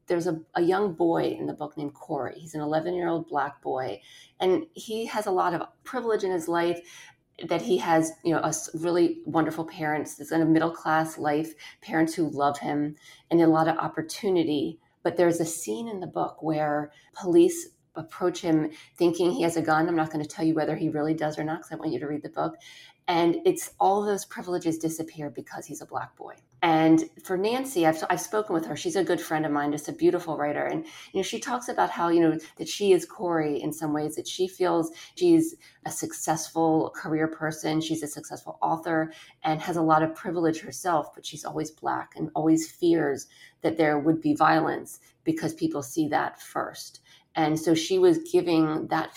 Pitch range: 155-180 Hz